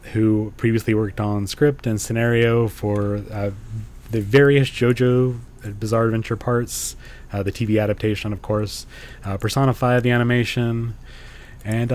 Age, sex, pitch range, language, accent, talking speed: 20-39, male, 105-125 Hz, English, American, 130 wpm